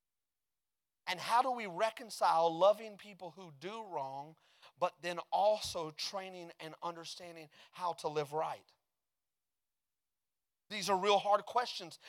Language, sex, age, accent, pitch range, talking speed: English, male, 30-49, American, 175-230 Hz, 125 wpm